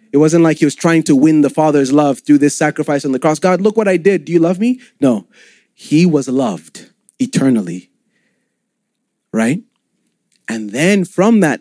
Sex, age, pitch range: male, 30-49, 125-205 Hz